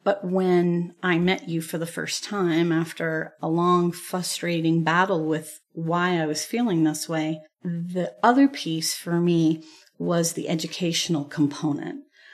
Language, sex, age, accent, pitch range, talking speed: English, female, 40-59, American, 165-185 Hz, 145 wpm